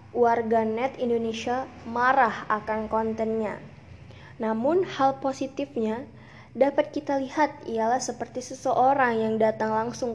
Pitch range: 225-265 Hz